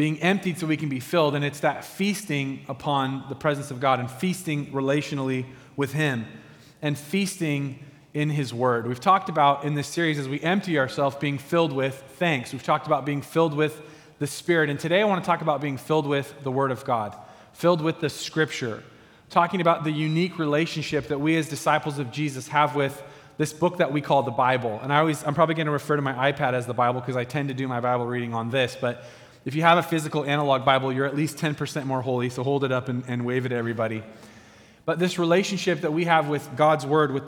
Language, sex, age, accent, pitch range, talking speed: English, male, 30-49, American, 135-170 Hz, 230 wpm